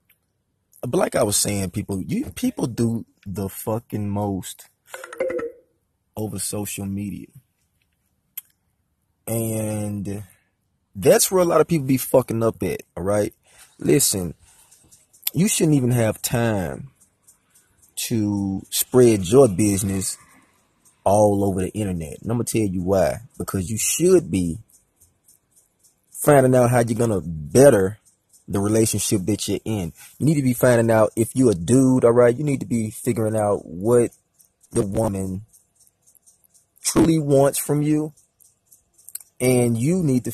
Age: 20-39